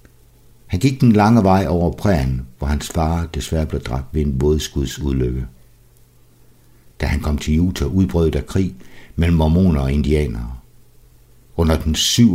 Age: 60-79